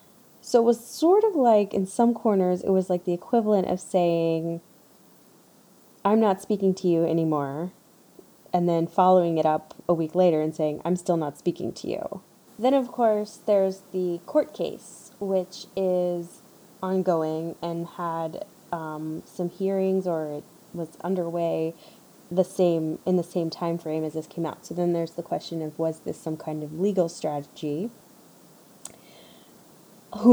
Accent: American